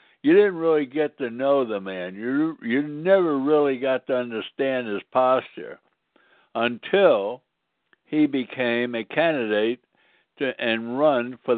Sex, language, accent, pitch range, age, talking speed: male, English, American, 110-155 Hz, 60-79, 135 wpm